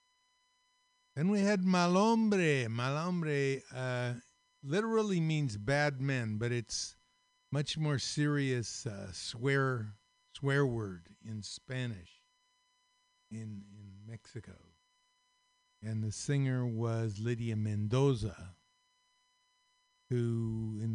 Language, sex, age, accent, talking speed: English, male, 60-79, American, 90 wpm